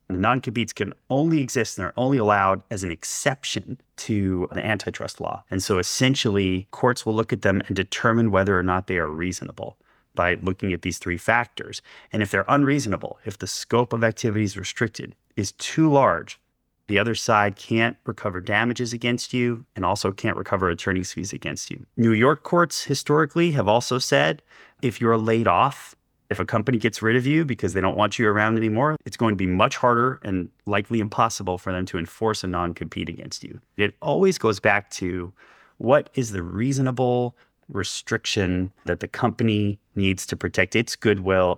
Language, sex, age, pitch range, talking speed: English, male, 30-49, 95-120 Hz, 180 wpm